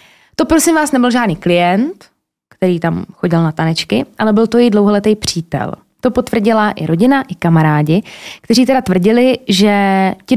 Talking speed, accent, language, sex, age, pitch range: 160 wpm, native, Czech, female, 20-39, 185-230 Hz